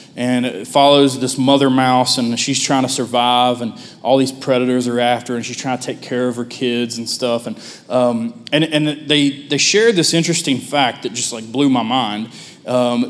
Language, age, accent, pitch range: English, 20-39, American, 125-145 Hz